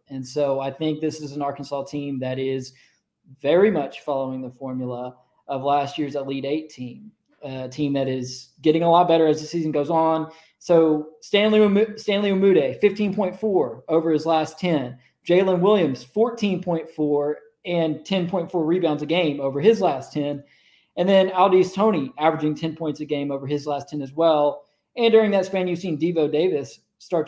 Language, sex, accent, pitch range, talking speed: English, male, American, 140-170 Hz, 175 wpm